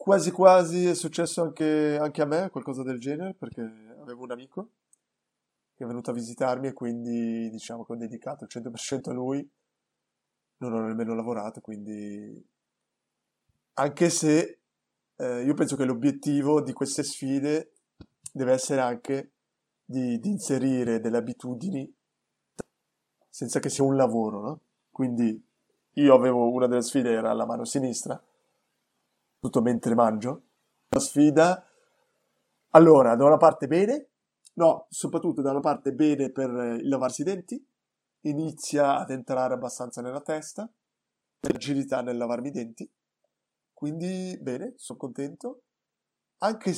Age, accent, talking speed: 20-39, native, 135 wpm